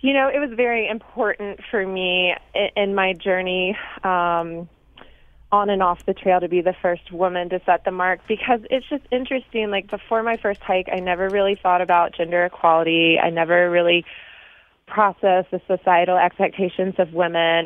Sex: female